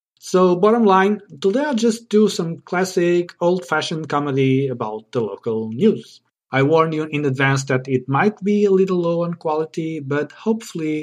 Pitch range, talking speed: 125-185 Hz, 170 wpm